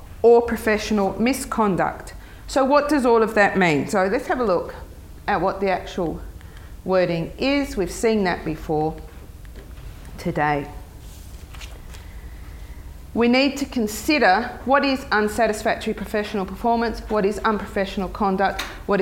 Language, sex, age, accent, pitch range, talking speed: English, female, 40-59, Australian, 175-235 Hz, 125 wpm